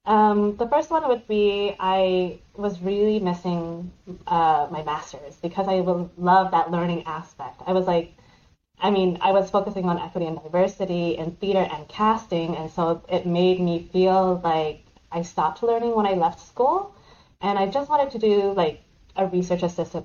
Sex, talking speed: female, 175 wpm